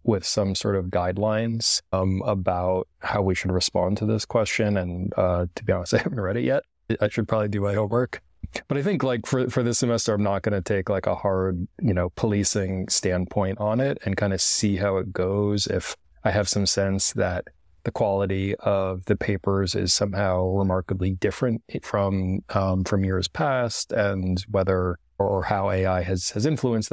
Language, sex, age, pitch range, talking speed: English, male, 30-49, 95-105 Hz, 195 wpm